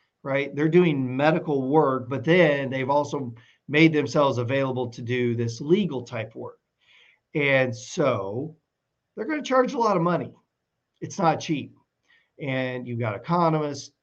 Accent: American